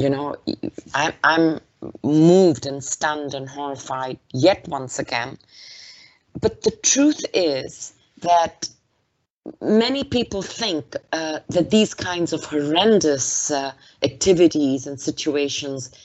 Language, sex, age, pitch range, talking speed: English, female, 30-49, 130-160 Hz, 110 wpm